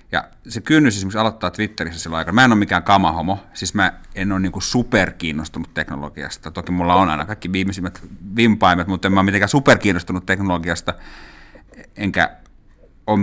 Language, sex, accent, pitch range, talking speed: Finnish, male, native, 85-100 Hz, 165 wpm